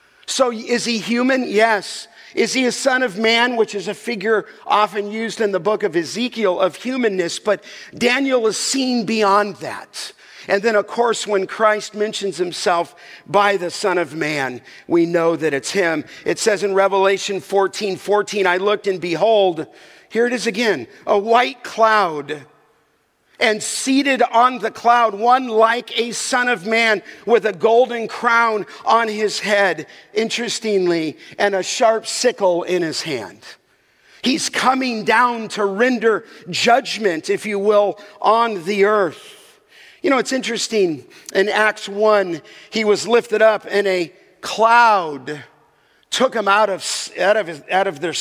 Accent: American